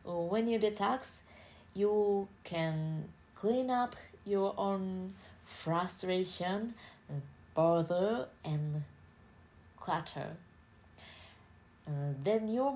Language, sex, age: Japanese, female, 30-49